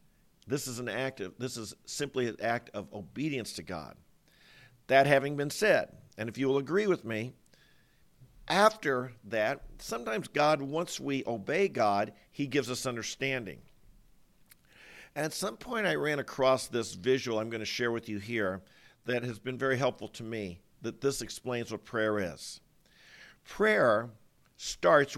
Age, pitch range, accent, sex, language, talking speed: 50-69, 115-140 Hz, American, male, English, 160 wpm